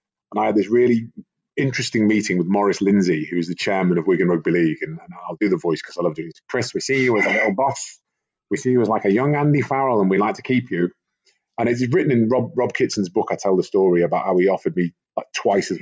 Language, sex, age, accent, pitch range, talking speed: English, male, 30-49, British, 95-120 Hz, 275 wpm